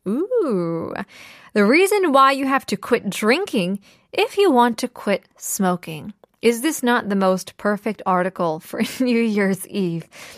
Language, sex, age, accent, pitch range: Korean, female, 20-39, American, 190-270 Hz